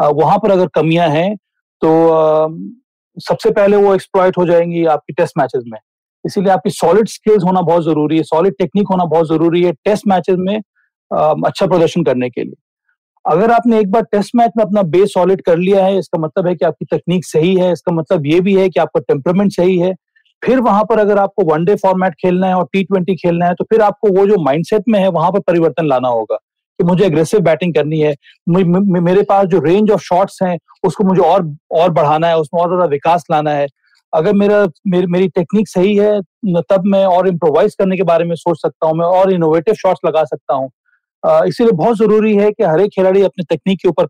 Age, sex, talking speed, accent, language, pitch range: 40-59, male, 200 wpm, native, Hindi, 165-205 Hz